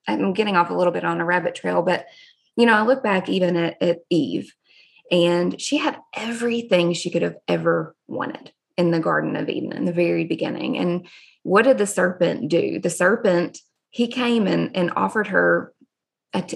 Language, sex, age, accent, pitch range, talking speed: English, female, 20-39, American, 175-220 Hz, 190 wpm